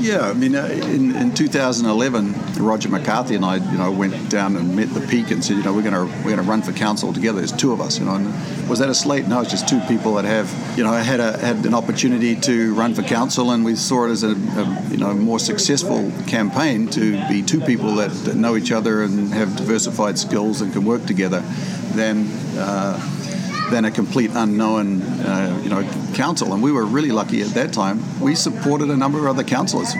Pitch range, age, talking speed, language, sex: 110-145 Hz, 50-69, 230 wpm, English, male